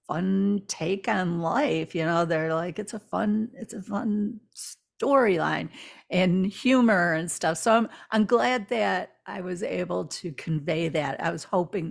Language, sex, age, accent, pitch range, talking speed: English, female, 50-69, American, 165-220 Hz, 165 wpm